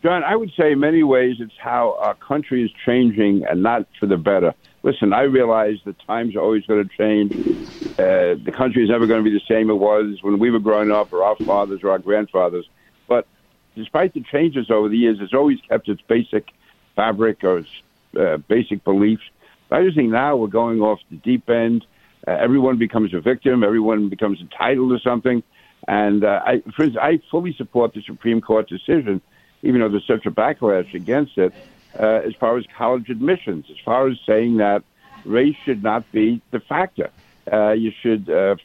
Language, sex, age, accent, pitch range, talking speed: English, male, 60-79, American, 105-130 Hz, 200 wpm